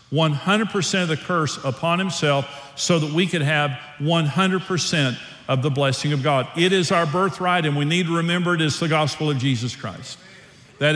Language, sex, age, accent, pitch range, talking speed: English, male, 50-69, American, 140-175 Hz, 180 wpm